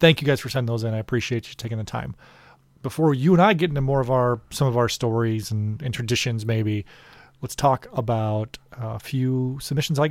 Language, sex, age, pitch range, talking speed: English, male, 40-59, 120-155 Hz, 220 wpm